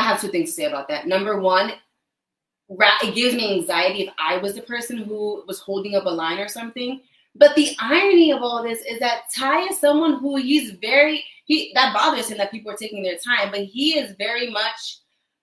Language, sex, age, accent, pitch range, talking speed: English, female, 20-39, American, 195-260 Hz, 220 wpm